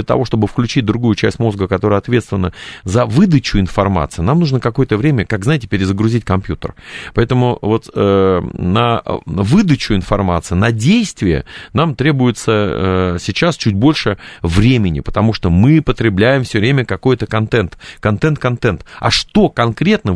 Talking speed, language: 140 wpm, Russian